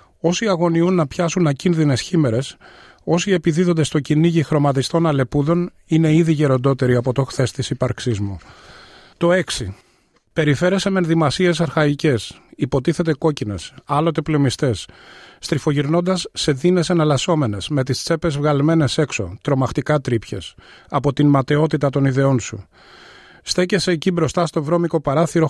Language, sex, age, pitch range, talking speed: Greek, male, 30-49, 135-165 Hz, 125 wpm